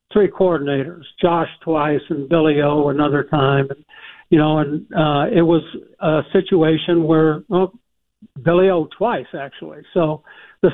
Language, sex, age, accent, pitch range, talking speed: English, male, 60-79, American, 150-180 Hz, 140 wpm